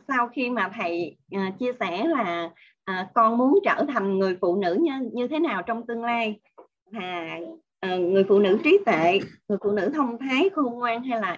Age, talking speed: 20-39, 205 wpm